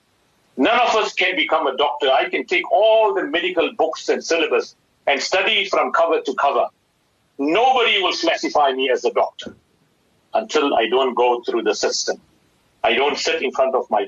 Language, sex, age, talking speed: English, male, 50-69, 185 wpm